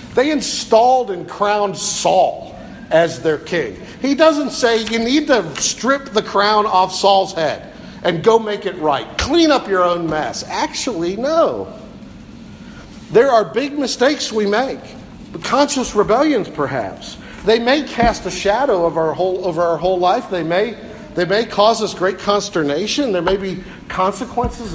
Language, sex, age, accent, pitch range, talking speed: English, male, 50-69, American, 180-245 Hz, 150 wpm